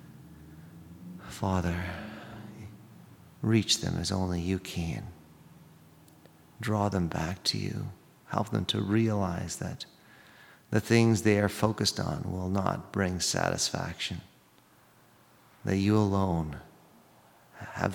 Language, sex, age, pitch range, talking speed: English, male, 40-59, 85-105 Hz, 105 wpm